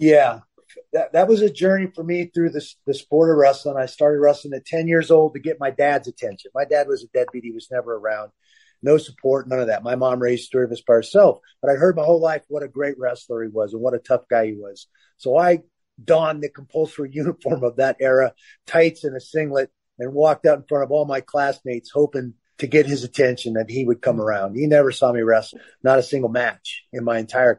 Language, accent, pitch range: English, American, 120-150 Hz